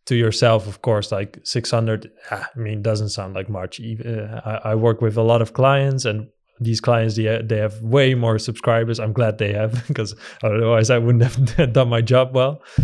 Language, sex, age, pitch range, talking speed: English, male, 20-39, 110-125 Hz, 190 wpm